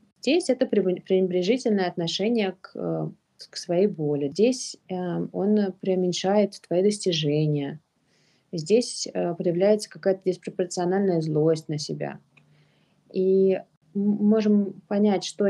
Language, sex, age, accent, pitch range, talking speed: Russian, female, 30-49, native, 165-210 Hz, 100 wpm